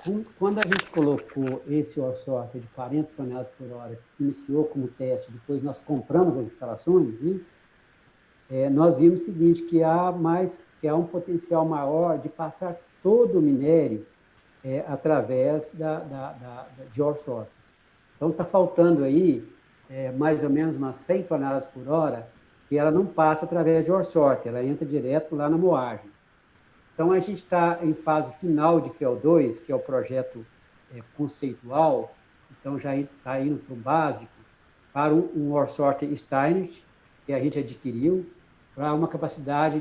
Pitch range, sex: 130-170 Hz, male